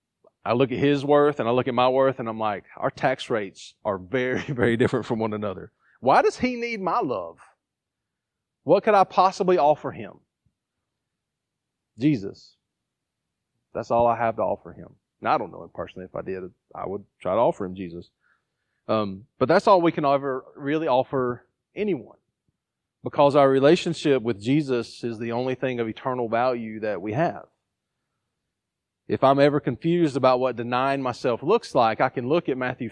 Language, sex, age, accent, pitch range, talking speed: English, male, 40-59, American, 110-135 Hz, 180 wpm